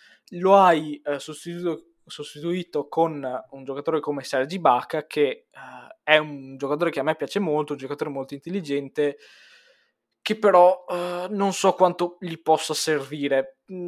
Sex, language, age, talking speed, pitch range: male, Italian, 20-39, 145 wpm, 140-175 Hz